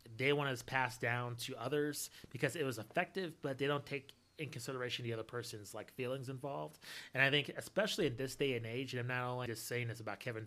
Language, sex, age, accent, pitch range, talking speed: English, male, 30-49, American, 115-145 Hz, 235 wpm